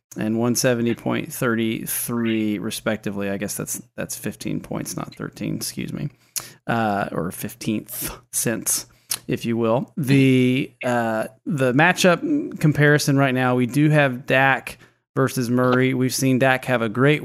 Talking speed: 135 wpm